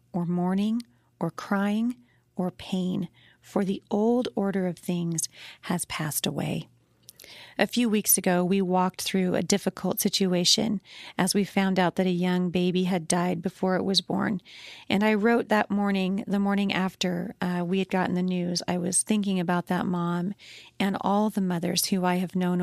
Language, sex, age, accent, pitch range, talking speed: English, female, 40-59, American, 180-205 Hz, 180 wpm